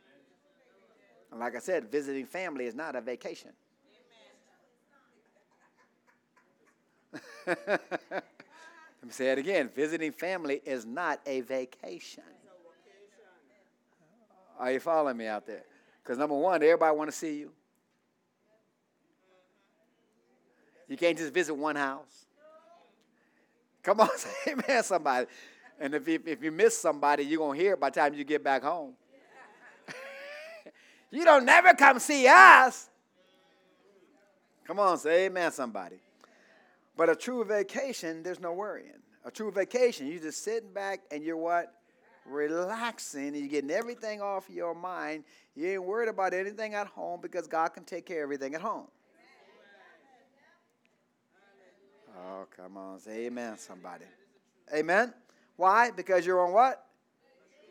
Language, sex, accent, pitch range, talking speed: English, male, American, 150-225 Hz, 130 wpm